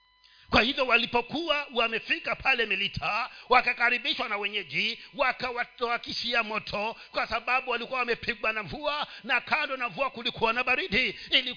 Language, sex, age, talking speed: Swahili, male, 50-69, 130 wpm